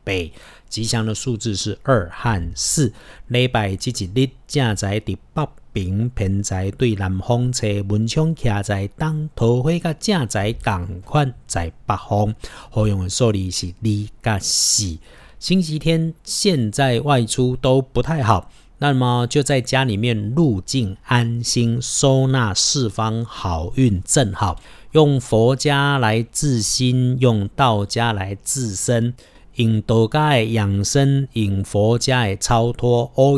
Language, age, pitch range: Chinese, 50-69, 105-130 Hz